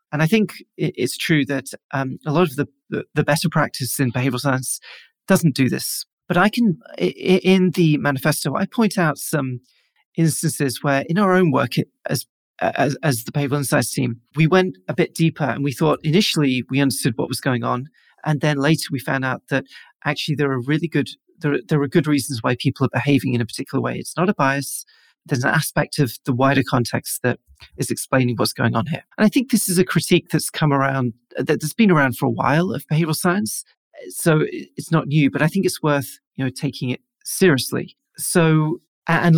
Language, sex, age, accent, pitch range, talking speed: English, male, 40-59, British, 135-170 Hz, 205 wpm